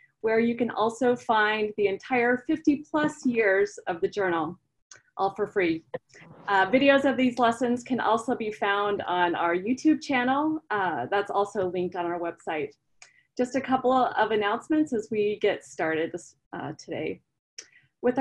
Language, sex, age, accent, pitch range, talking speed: English, female, 30-49, American, 195-250 Hz, 160 wpm